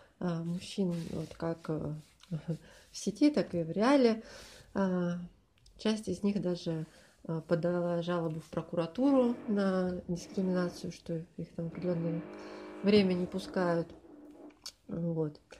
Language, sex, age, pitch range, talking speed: Russian, female, 30-49, 170-200 Hz, 95 wpm